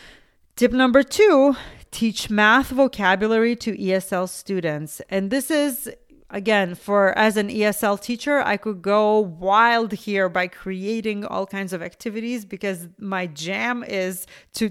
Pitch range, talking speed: 195-260 Hz, 140 wpm